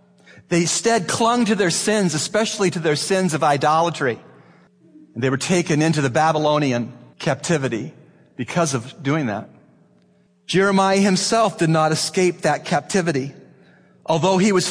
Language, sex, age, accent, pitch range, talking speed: English, male, 40-59, American, 145-185 Hz, 140 wpm